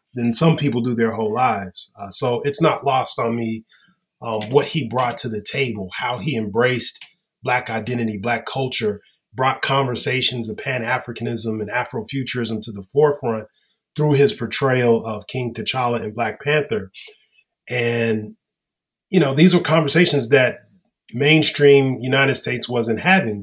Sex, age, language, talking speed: male, 30-49, English, 150 wpm